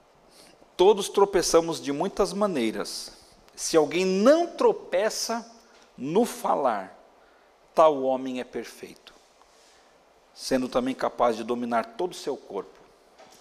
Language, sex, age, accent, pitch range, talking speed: Portuguese, male, 50-69, Brazilian, 120-165 Hz, 105 wpm